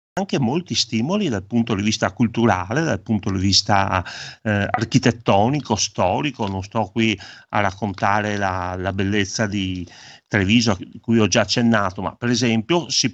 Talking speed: 155 wpm